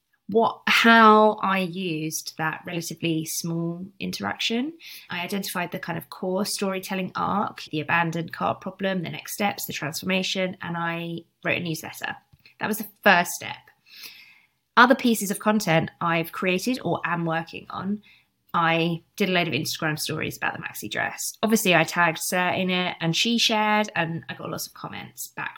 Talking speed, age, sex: 170 wpm, 20-39, female